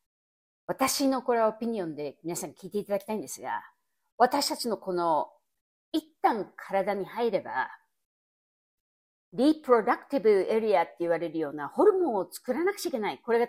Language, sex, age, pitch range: Japanese, female, 50-69, 185-270 Hz